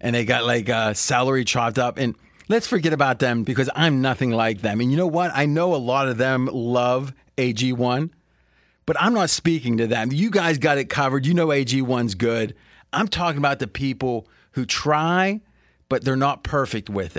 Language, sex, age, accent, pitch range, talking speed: English, male, 30-49, American, 115-155 Hz, 200 wpm